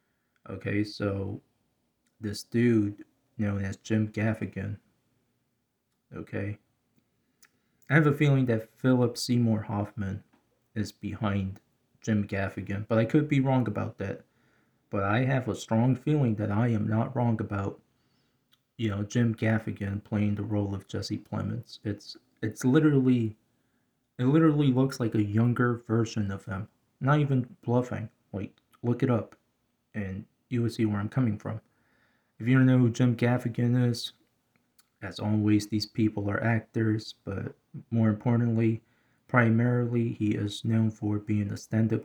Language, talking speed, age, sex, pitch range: English, 145 wpm, 20-39, male, 105-120 Hz